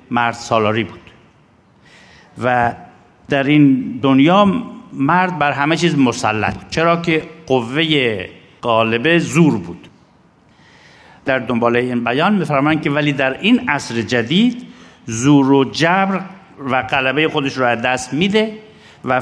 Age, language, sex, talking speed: 50-69, Persian, male, 125 wpm